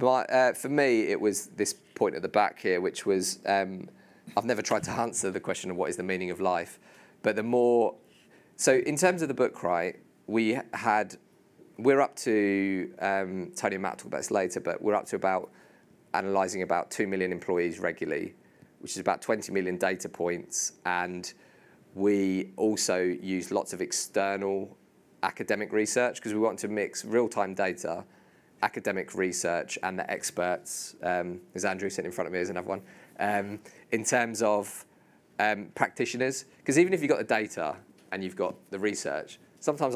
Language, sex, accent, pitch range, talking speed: English, male, British, 95-125 Hz, 180 wpm